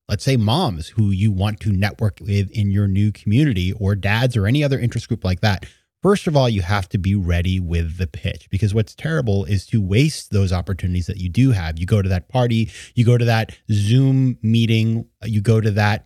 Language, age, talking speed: English, 30-49, 225 wpm